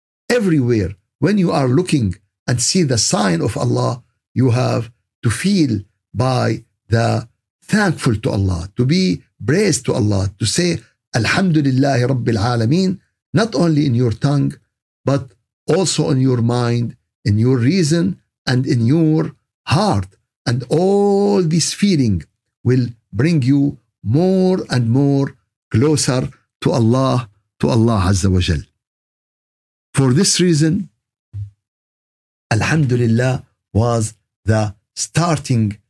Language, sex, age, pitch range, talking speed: Arabic, male, 50-69, 110-150 Hz, 120 wpm